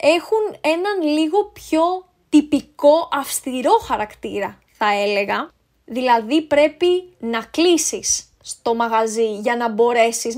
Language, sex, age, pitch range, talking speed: Greek, female, 20-39, 230-315 Hz, 105 wpm